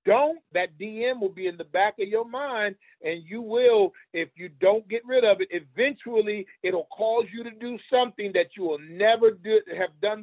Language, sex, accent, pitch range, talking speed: English, male, American, 175-225 Hz, 200 wpm